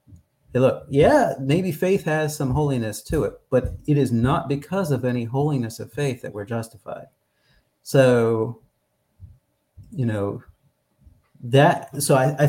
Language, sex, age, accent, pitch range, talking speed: English, male, 40-59, American, 105-135 Hz, 140 wpm